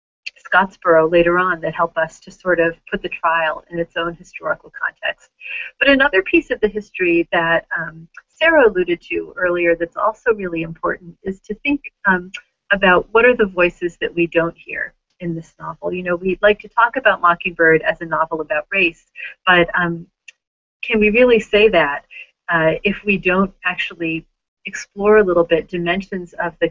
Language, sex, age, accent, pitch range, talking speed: English, female, 40-59, American, 165-205 Hz, 180 wpm